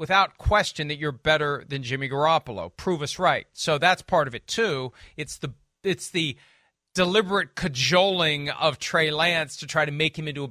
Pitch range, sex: 145-195 Hz, male